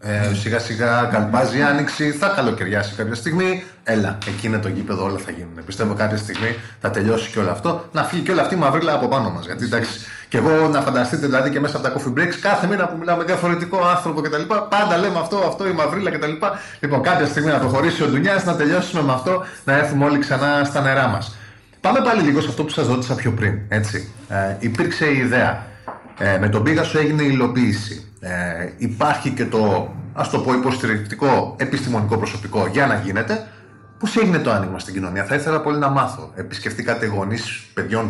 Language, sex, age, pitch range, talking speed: Greek, male, 30-49, 105-150 Hz, 205 wpm